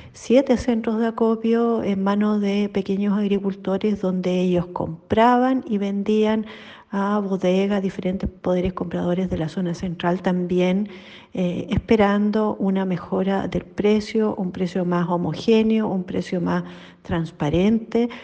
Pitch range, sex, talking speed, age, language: 175-205 Hz, female, 125 wpm, 40-59, Spanish